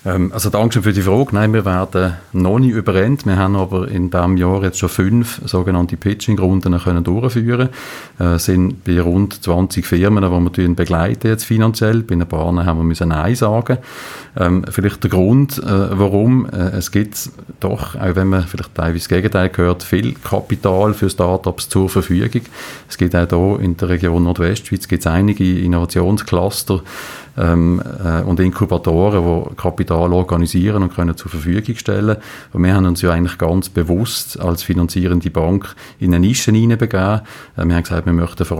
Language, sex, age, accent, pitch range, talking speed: German, male, 40-59, Austrian, 85-105 Hz, 165 wpm